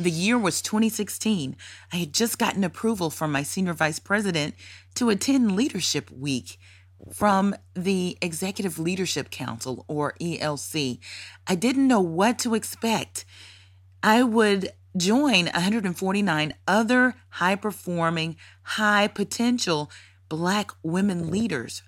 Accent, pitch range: American, 130-200 Hz